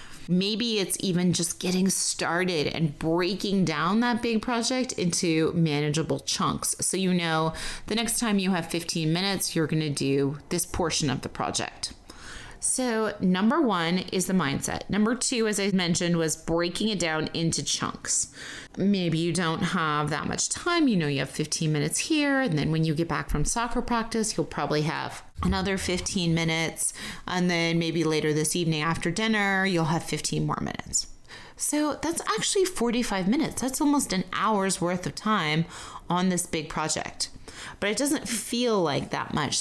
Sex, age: female, 30-49